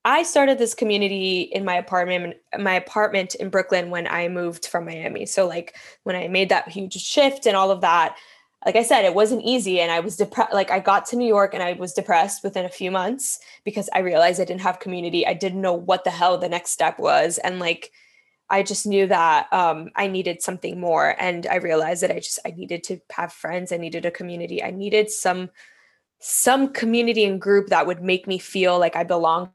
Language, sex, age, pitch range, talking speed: English, female, 10-29, 180-215 Hz, 225 wpm